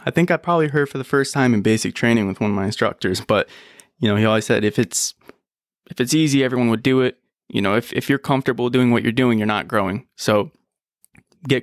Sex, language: male, English